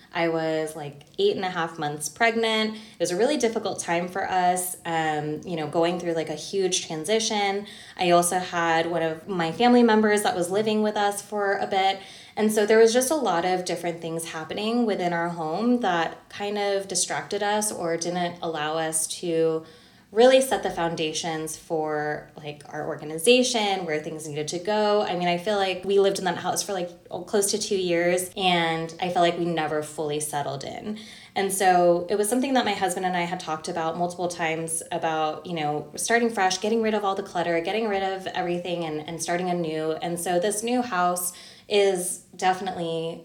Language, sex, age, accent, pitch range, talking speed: English, female, 20-39, American, 165-200 Hz, 200 wpm